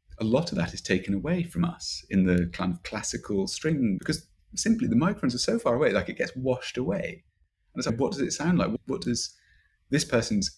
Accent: British